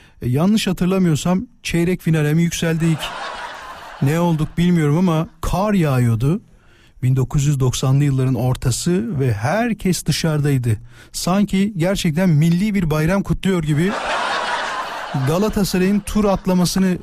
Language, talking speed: Turkish, 95 wpm